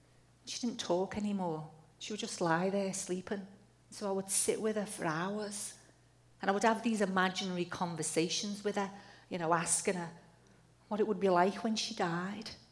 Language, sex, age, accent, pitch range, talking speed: English, female, 40-59, British, 165-215 Hz, 185 wpm